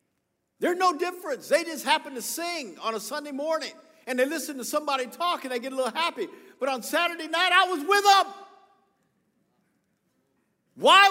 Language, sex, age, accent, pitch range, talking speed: English, male, 50-69, American, 215-320 Hz, 180 wpm